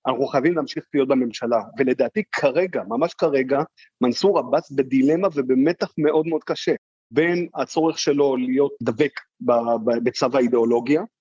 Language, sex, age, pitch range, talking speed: Hebrew, male, 40-59, 135-185 Hz, 125 wpm